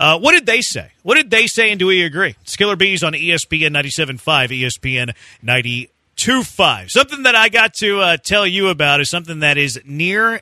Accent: American